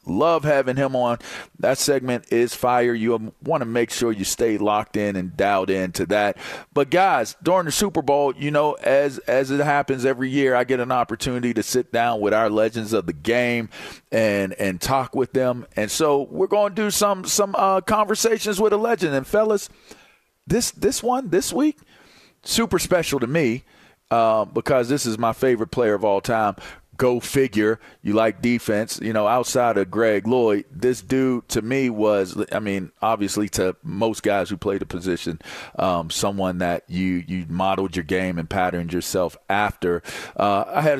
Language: English